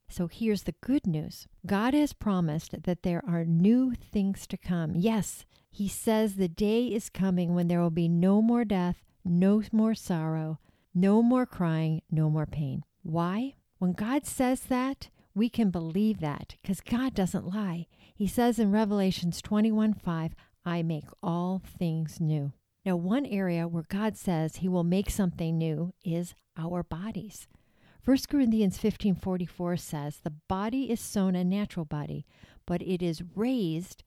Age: 50-69